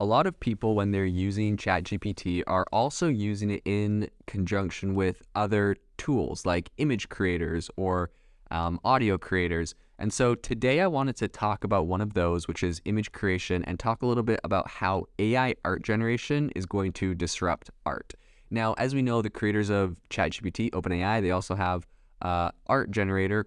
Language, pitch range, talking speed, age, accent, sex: English, 90-110 Hz, 175 wpm, 20-39, American, male